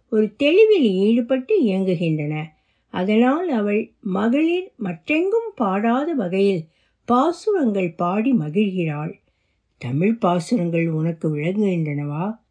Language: Tamil